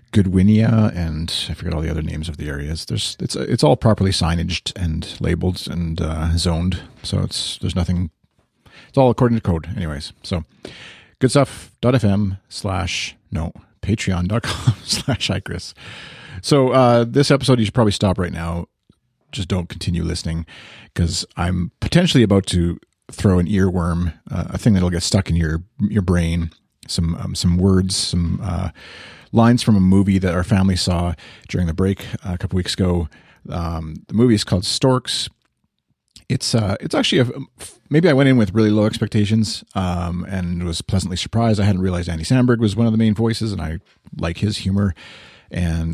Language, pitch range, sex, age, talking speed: English, 85-110 Hz, male, 40-59, 170 wpm